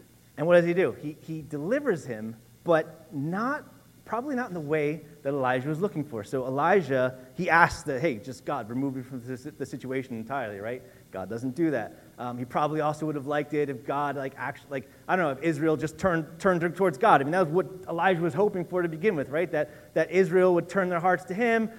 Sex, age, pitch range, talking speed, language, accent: male, 30-49, 125-170 Hz, 235 wpm, English, American